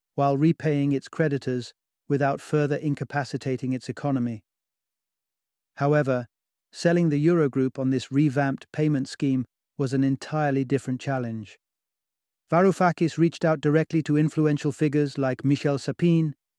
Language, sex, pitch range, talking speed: English, male, 125-150 Hz, 120 wpm